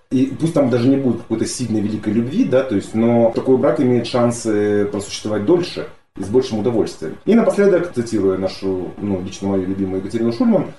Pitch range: 100-125 Hz